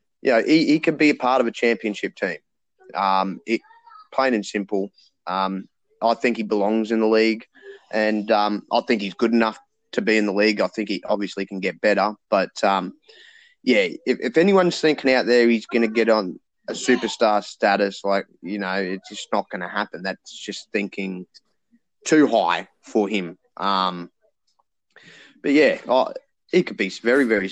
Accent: Australian